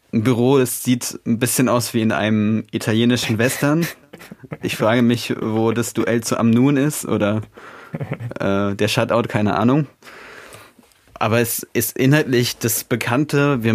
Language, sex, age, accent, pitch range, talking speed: German, male, 20-39, German, 110-120 Hz, 150 wpm